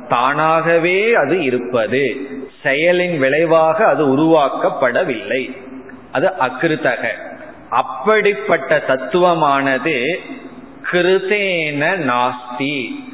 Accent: native